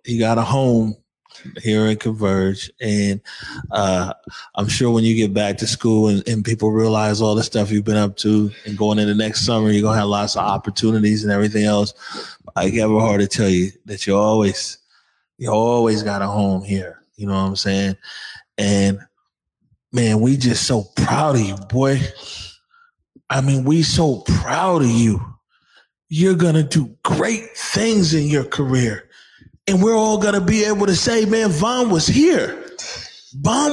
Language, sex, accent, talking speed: English, male, American, 180 wpm